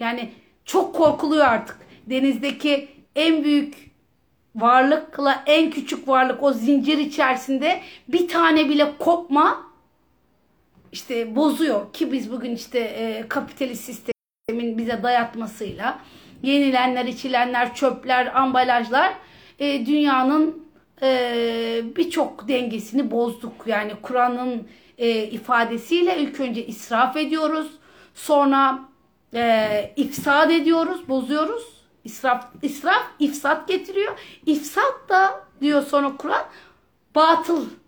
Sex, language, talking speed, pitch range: female, Turkish, 100 wpm, 245-310 Hz